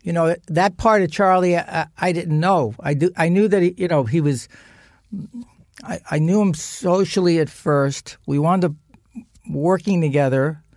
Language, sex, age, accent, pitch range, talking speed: English, male, 60-79, American, 140-175 Hz, 180 wpm